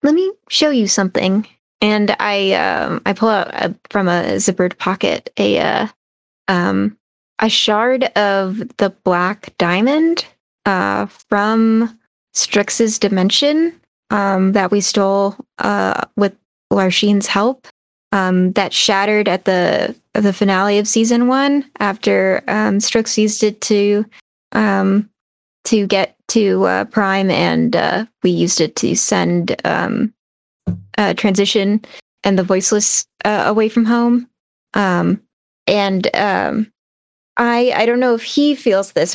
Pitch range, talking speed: 195-235 Hz, 135 wpm